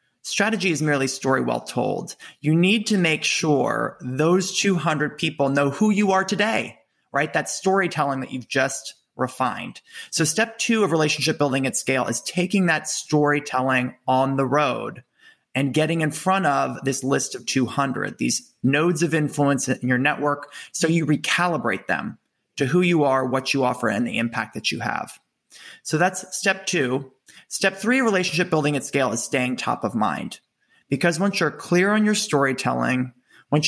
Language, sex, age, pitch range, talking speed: English, male, 20-39, 130-175 Hz, 175 wpm